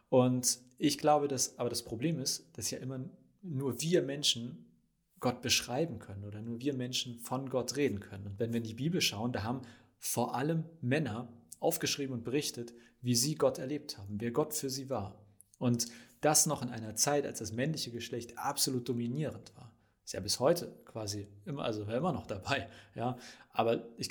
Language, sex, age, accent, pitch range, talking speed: German, male, 30-49, German, 110-135 Hz, 190 wpm